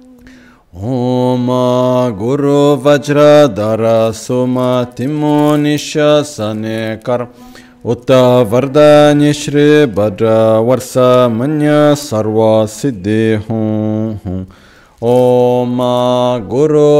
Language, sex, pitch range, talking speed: Italian, male, 110-145 Hz, 60 wpm